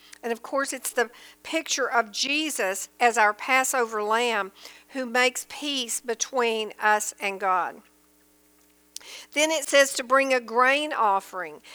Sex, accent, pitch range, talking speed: female, American, 215-275 Hz, 140 wpm